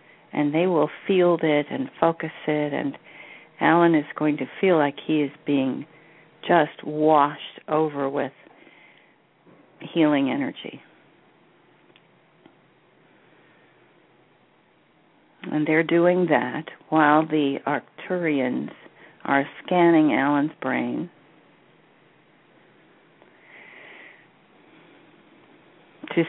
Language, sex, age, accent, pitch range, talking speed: English, female, 50-69, American, 145-165 Hz, 80 wpm